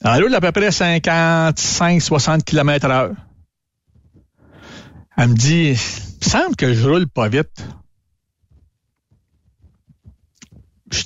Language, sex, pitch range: French, male, 120-165 Hz